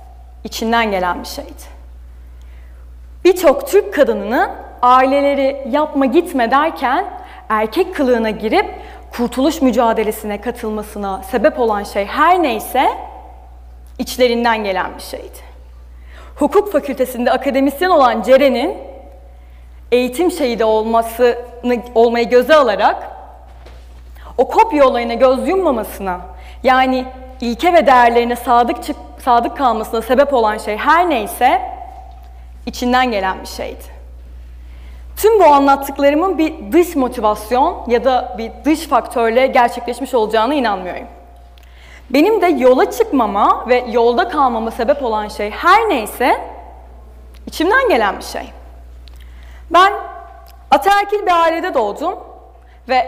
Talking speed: 105 wpm